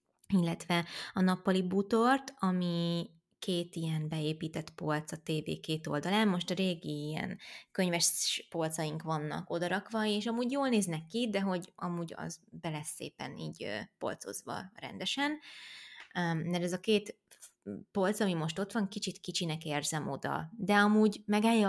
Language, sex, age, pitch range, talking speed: Hungarian, female, 20-39, 160-200 Hz, 140 wpm